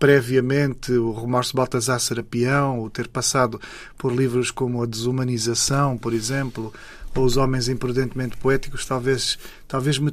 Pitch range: 120-135 Hz